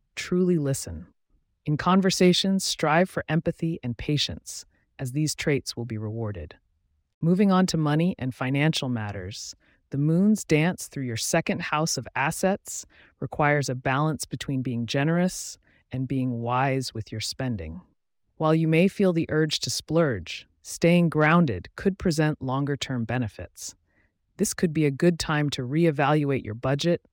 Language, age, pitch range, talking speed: English, 30-49, 115-160 Hz, 150 wpm